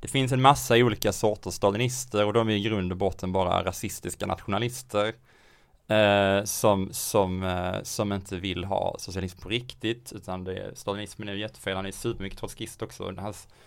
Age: 20-39